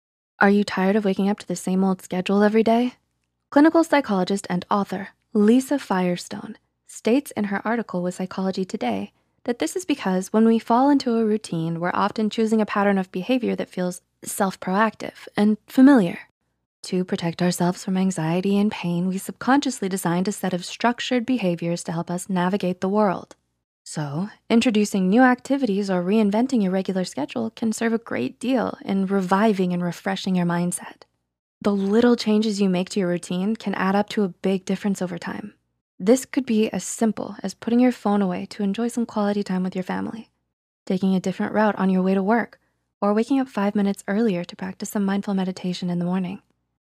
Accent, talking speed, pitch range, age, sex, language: American, 190 wpm, 180-225 Hz, 20-39, female, English